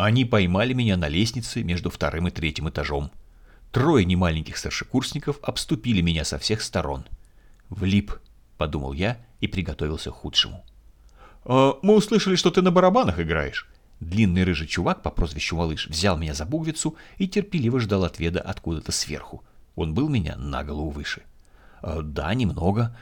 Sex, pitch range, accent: male, 80-120 Hz, native